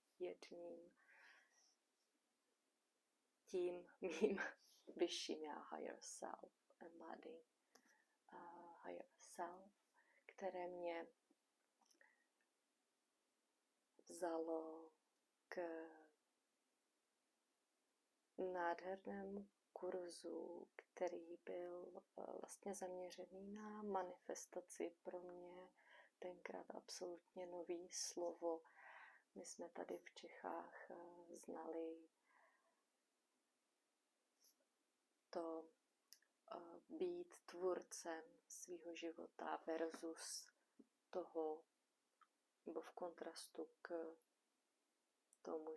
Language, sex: Czech, female